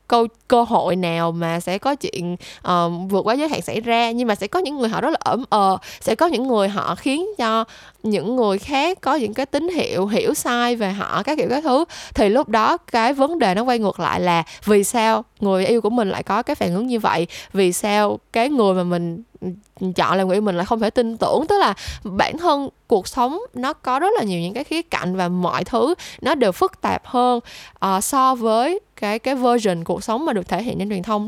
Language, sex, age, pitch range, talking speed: Vietnamese, female, 10-29, 190-265 Hz, 240 wpm